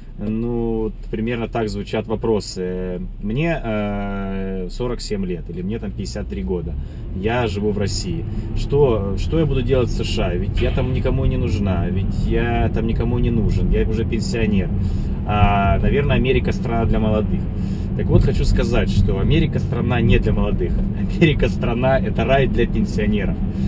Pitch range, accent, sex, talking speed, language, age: 100-135 Hz, native, male, 155 wpm, Russian, 20-39